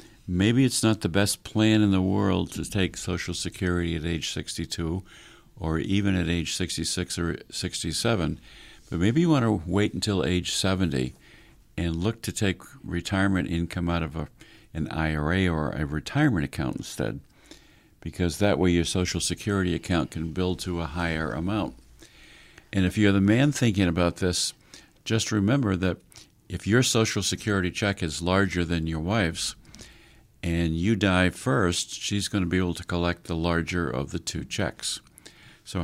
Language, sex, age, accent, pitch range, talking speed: English, male, 50-69, American, 85-100 Hz, 165 wpm